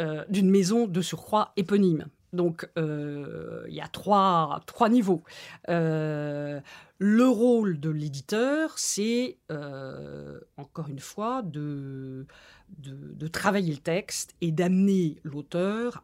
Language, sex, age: French, female, 50-69